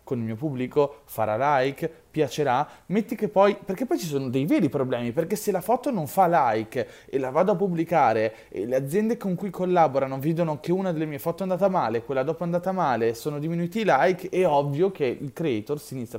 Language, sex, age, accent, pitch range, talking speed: Italian, male, 20-39, native, 115-175 Hz, 220 wpm